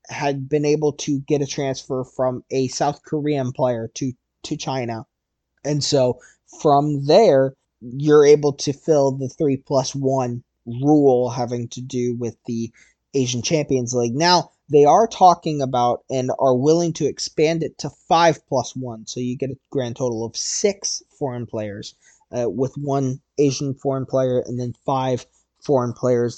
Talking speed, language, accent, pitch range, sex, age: 165 wpm, English, American, 130-150 Hz, male, 20-39